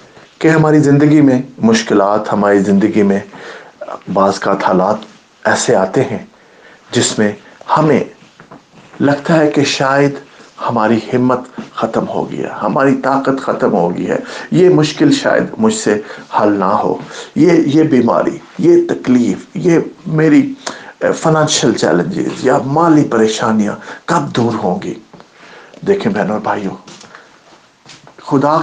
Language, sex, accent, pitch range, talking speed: English, male, Indian, 120-160 Hz, 115 wpm